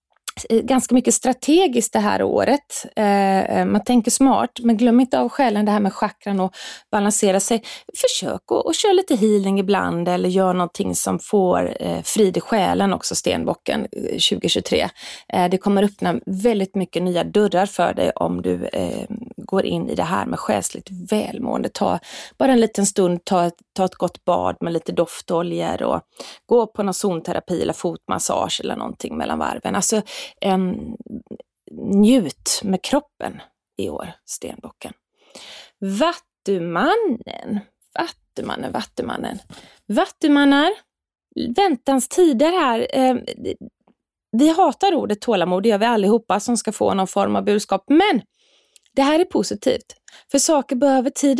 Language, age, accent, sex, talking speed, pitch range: Swedish, 20-39, native, female, 145 wpm, 195-265 Hz